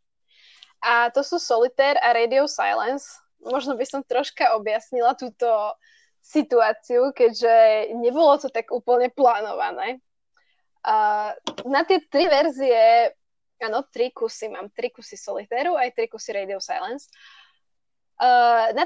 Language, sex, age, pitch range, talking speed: Slovak, female, 10-29, 225-310 Hz, 125 wpm